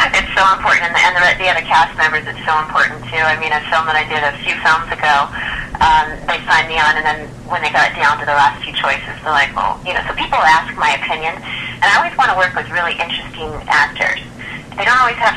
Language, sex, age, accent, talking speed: English, female, 30-49, American, 255 wpm